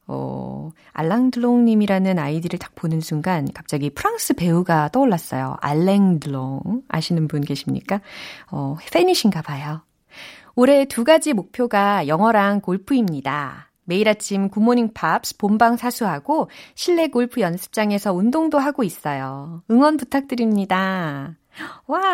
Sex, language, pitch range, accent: female, Korean, 165-245 Hz, native